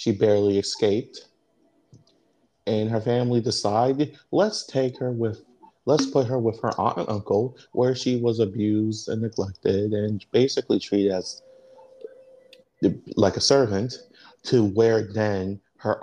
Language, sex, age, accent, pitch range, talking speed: English, male, 30-49, American, 105-140 Hz, 135 wpm